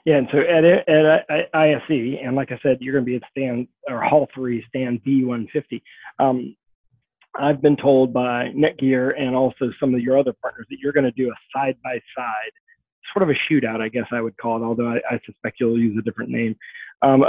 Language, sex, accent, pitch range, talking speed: English, male, American, 120-145 Hz, 220 wpm